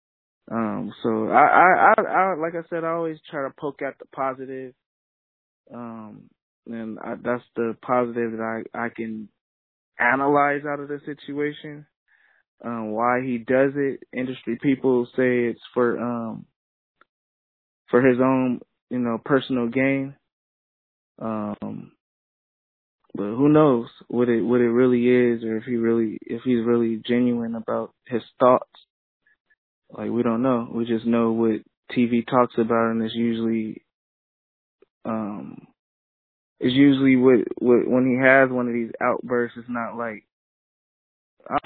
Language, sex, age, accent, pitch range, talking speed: English, male, 20-39, American, 115-135 Hz, 145 wpm